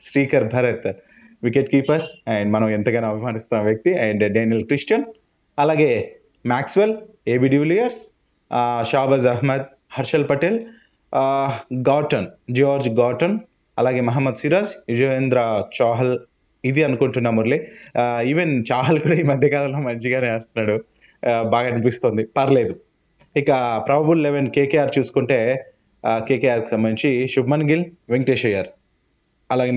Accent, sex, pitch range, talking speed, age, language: native, male, 120-155 Hz, 110 wpm, 20-39, Telugu